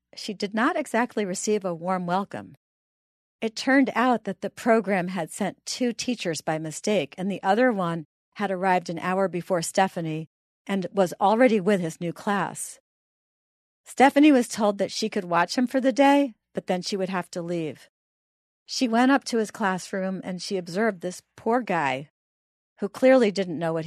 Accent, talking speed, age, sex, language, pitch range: American, 180 wpm, 40-59, female, English, 170-215 Hz